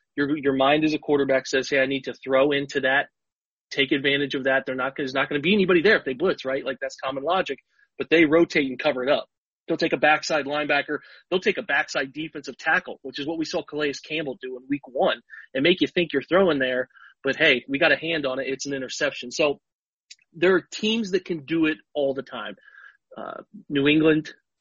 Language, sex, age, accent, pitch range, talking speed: English, male, 30-49, American, 140-185 Hz, 235 wpm